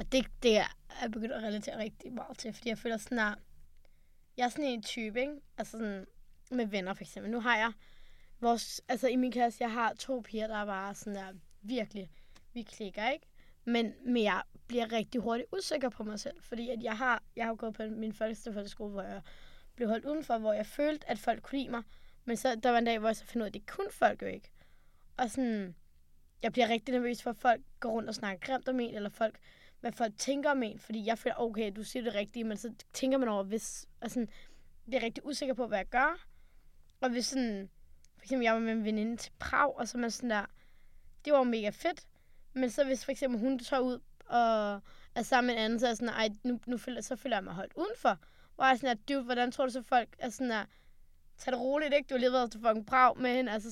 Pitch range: 215-255 Hz